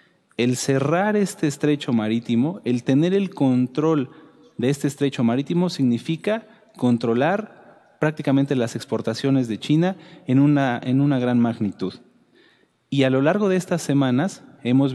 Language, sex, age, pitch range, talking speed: Spanish, male, 30-49, 120-155 Hz, 135 wpm